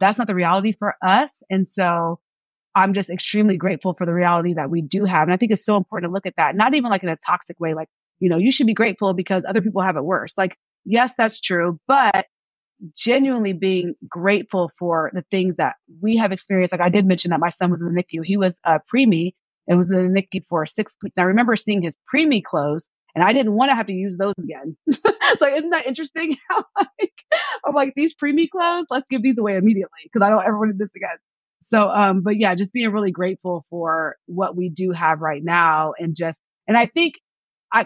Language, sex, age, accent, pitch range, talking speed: English, female, 30-49, American, 175-225 Hz, 240 wpm